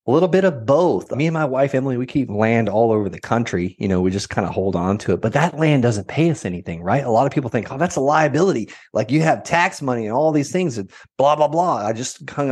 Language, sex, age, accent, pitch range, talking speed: English, male, 30-49, American, 100-140 Hz, 290 wpm